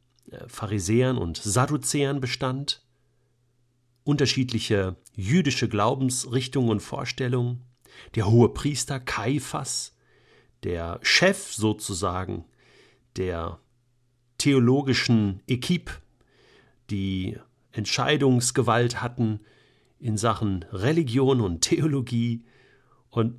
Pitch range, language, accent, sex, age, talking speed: 115-140 Hz, German, German, male, 50-69, 70 wpm